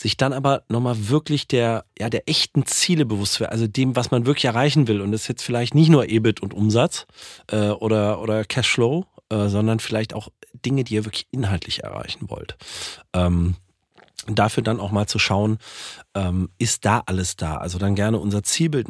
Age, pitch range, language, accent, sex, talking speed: 40-59, 90-125 Hz, German, German, male, 195 wpm